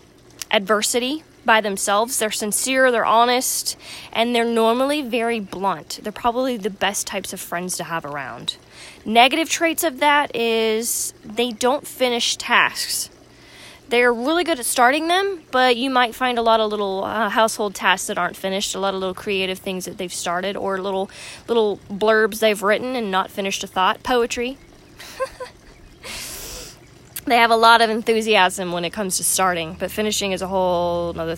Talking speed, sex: 170 wpm, female